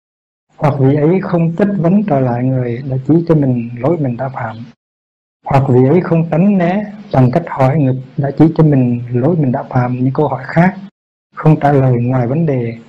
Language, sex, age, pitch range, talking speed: Vietnamese, male, 60-79, 125-160 Hz, 210 wpm